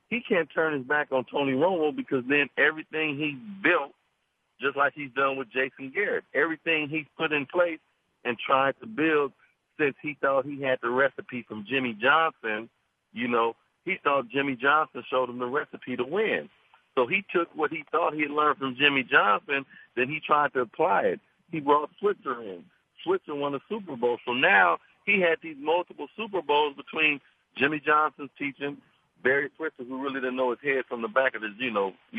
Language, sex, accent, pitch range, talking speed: English, male, American, 135-160 Hz, 200 wpm